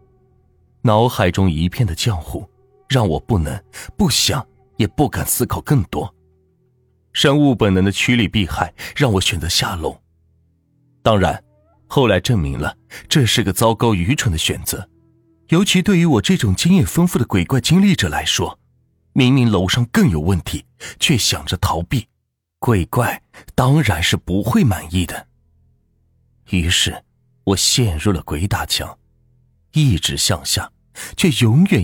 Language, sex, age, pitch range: Chinese, male, 30-49, 90-130 Hz